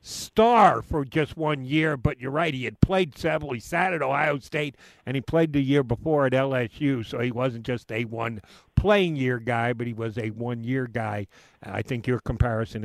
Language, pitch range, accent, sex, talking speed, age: English, 130-185 Hz, American, male, 195 wpm, 50-69